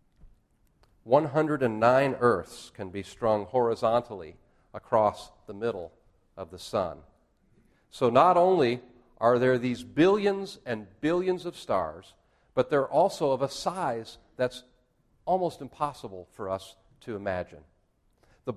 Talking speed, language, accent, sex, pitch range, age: 120 wpm, English, American, male, 115-150 Hz, 50-69